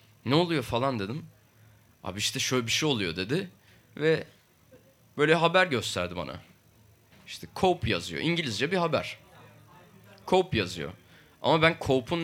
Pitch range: 105-135 Hz